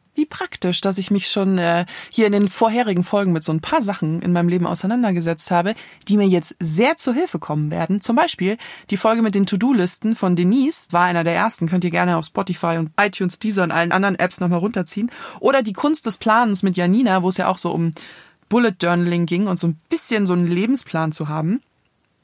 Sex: female